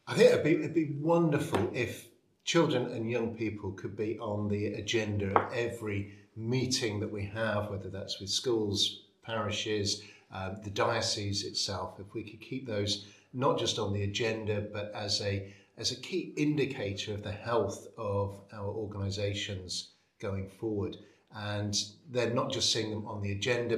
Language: English